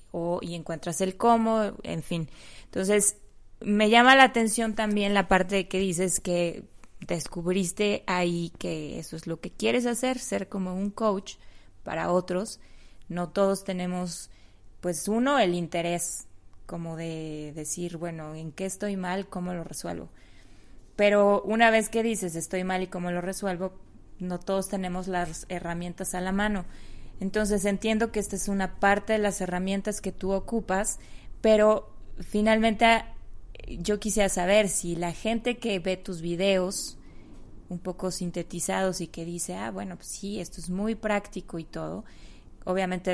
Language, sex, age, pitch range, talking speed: Spanish, female, 20-39, 175-205 Hz, 155 wpm